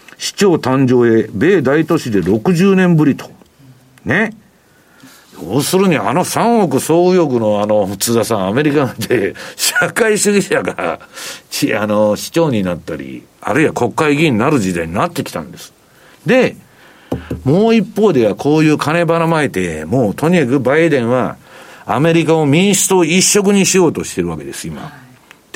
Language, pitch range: Japanese, 120-190 Hz